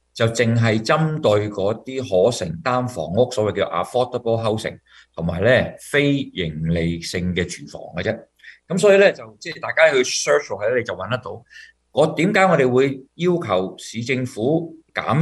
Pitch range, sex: 95-135 Hz, male